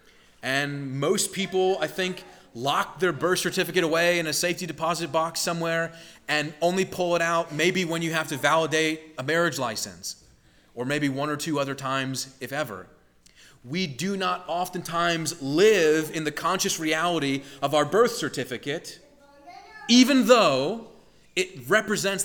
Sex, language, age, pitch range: male, English, 30-49, 145-185 Hz